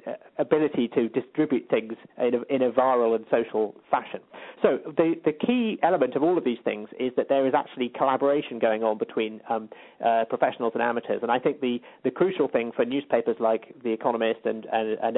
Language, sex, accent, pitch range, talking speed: English, male, British, 115-140 Hz, 200 wpm